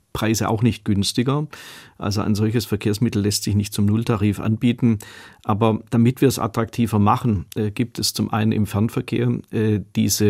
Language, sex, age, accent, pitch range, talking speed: German, male, 40-59, German, 105-115 Hz, 170 wpm